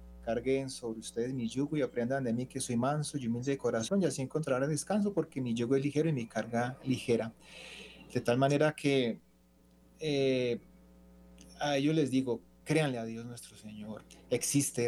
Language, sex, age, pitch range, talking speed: Spanish, male, 30-49, 110-130 Hz, 180 wpm